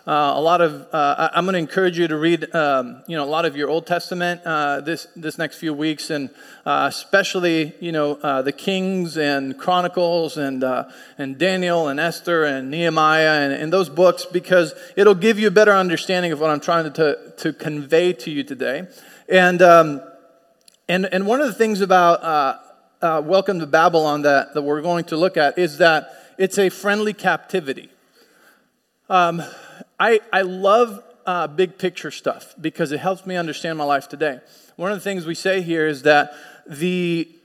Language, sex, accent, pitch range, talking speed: English, male, American, 155-185 Hz, 190 wpm